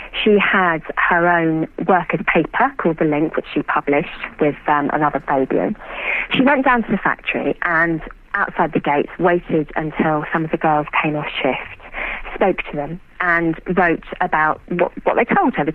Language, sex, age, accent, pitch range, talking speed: English, female, 40-59, British, 160-205 Hz, 180 wpm